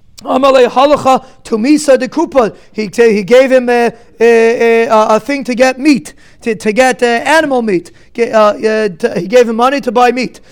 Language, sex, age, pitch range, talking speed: English, male, 30-49, 225-275 Hz, 200 wpm